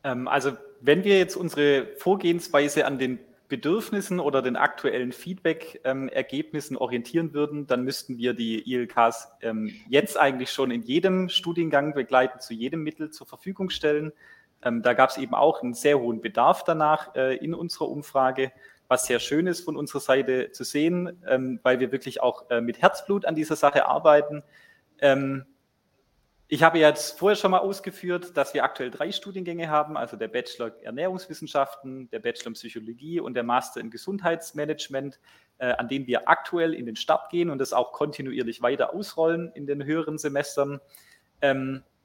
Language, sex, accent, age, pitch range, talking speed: German, male, German, 30-49, 130-170 Hz, 165 wpm